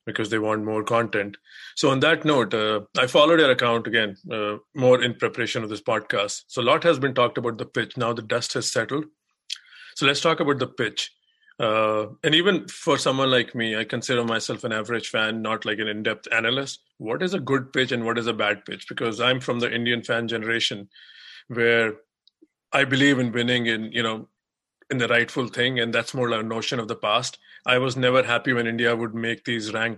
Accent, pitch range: Indian, 115-130 Hz